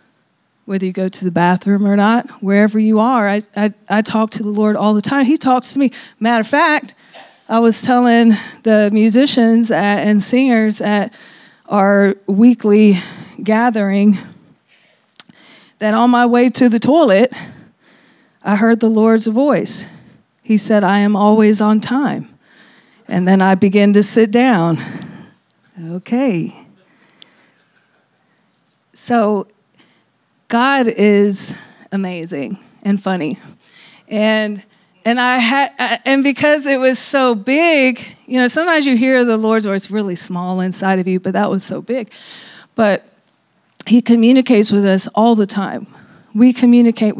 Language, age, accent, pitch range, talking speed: English, 40-59, American, 200-245 Hz, 140 wpm